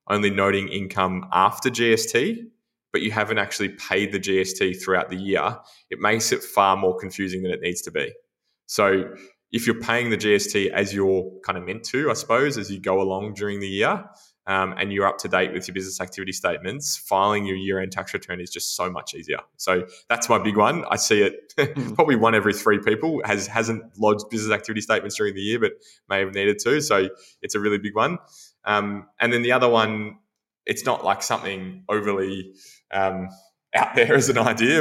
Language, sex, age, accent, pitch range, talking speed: English, male, 20-39, Australian, 95-115 Hz, 200 wpm